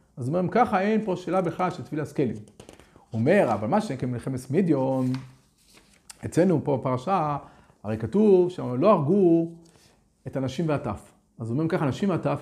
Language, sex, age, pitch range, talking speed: Hebrew, male, 40-59, 125-180 Hz, 155 wpm